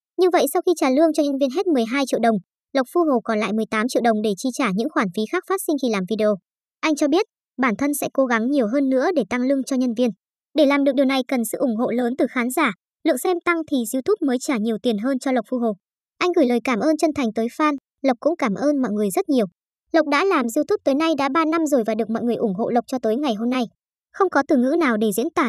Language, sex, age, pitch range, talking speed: Vietnamese, male, 20-39, 230-305 Hz, 290 wpm